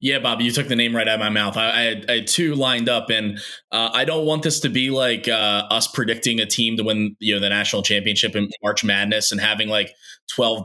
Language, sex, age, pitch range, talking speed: English, male, 20-39, 105-120 Hz, 265 wpm